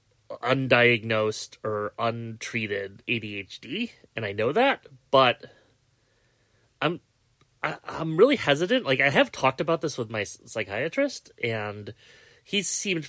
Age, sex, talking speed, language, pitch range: 30-49, male, 115 wpm, English, 115-135 Hz